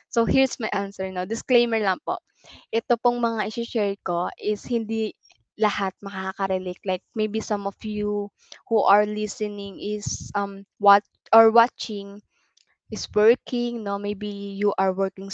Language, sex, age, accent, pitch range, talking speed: Filipino, female, 20-39, native, 190-225 Hz, 145 wpm